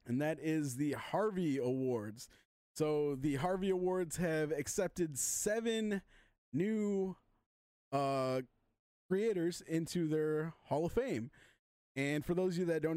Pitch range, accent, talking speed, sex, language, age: 135-165 Hz, American, 130 wpm, male, English, 20-39